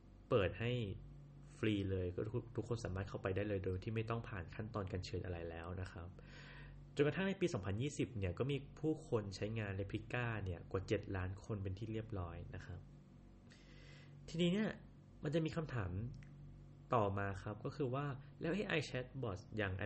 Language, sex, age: Thai, male, 20-39